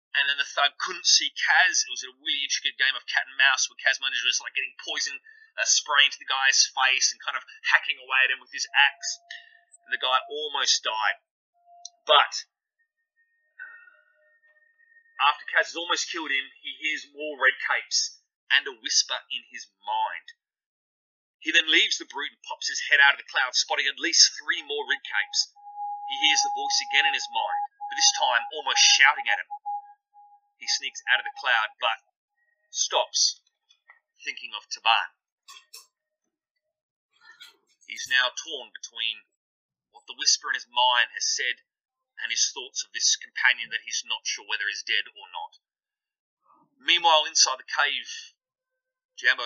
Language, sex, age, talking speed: English, male, 30-49, 170 wpm